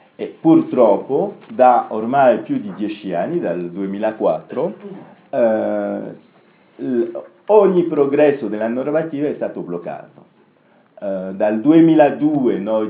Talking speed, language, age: 105 wpm, Italian, 50-69